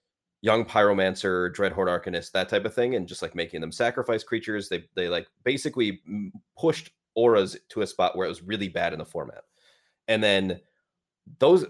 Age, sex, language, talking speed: 30-49, male, English, 185 wpm